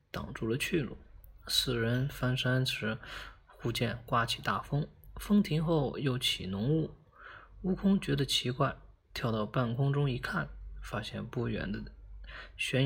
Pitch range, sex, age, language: 115-150 Hz, male, 20-39, Chinese